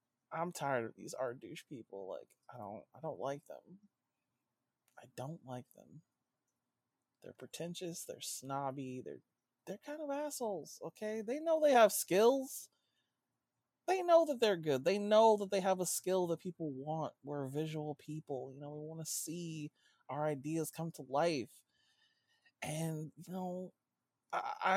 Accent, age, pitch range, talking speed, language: American, 30-49, 130-180 Hz, 160 wpm, English